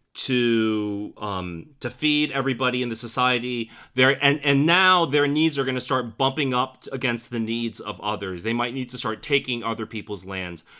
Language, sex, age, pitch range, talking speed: English, male, 30-49, 105-140 Hz, 185 wpm